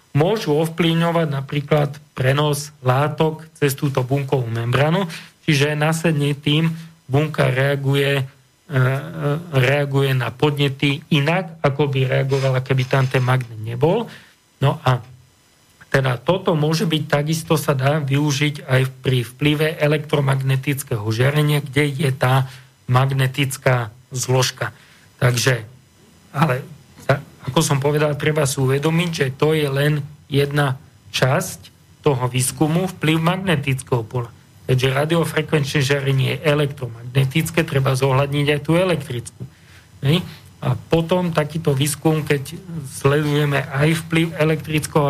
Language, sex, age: Slovak, male, 40-59